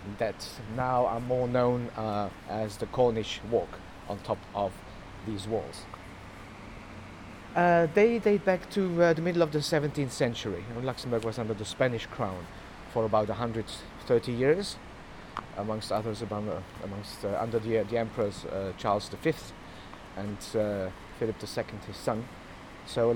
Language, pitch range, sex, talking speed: English, 105-130 Hz, male, 160 wpm